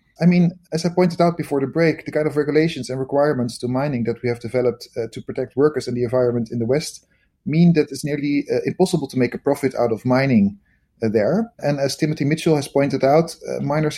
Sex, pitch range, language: male, 125-160 Hz, English